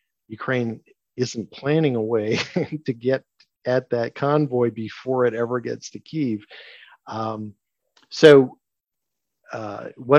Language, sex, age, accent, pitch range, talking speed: English, male, 50-69, American, 105-125 Hz, 120 wpm